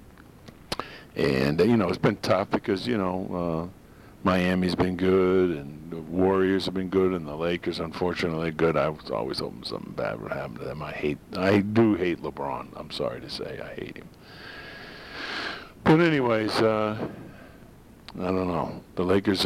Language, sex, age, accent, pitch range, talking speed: English, male, 50-69, American, 80-100 Hz, 170 wpm